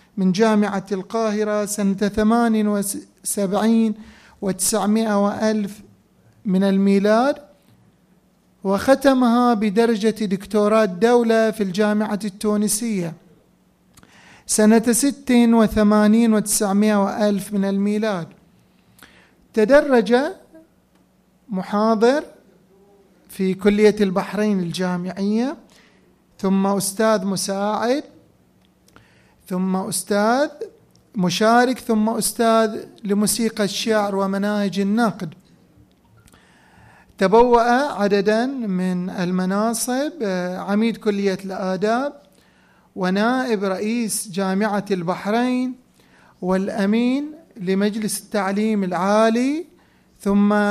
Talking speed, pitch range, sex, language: 70 wpm, 195-225 Hz, male, Arabic